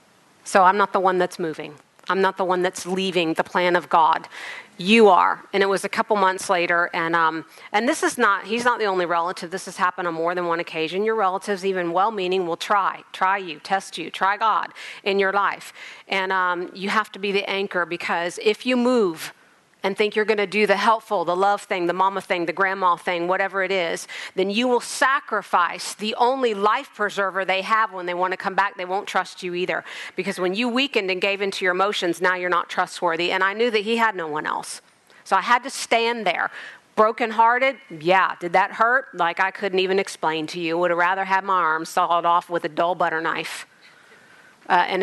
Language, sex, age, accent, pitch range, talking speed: English, female, 40-59, American, 180-210 Hz, 225 wpm